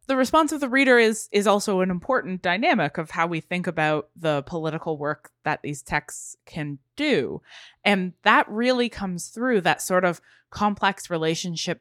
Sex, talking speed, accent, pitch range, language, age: female, 175 wpm, American, 160-210 Hz, English, 20-39